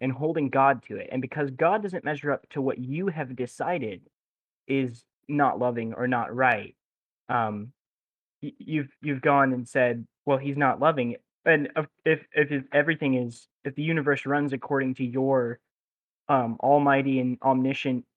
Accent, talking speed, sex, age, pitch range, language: American, 160 wpm, male, 20-39, 130-160 Hz, English